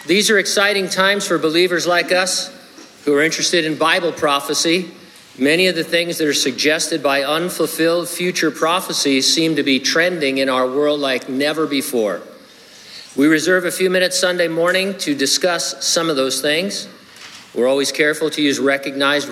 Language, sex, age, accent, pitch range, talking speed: English, male, 50-69, American, 140-175 Hz, 170 wpm